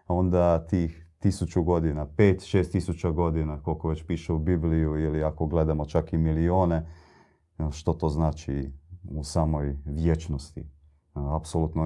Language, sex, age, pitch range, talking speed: Croatian, male, 30-49, 80-95 Hz, 130 wpm